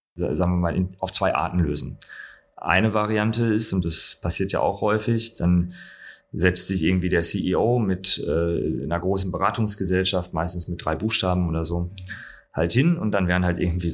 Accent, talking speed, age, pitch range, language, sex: German, 170 wpm, 30-49, 85-100 Hz, German, male